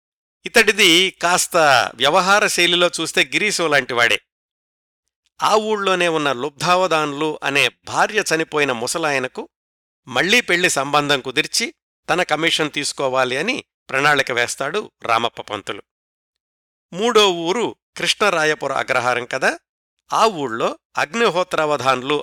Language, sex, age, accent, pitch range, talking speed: Telugu, male, 50-69, native, 130-175 Hz, 85 wpm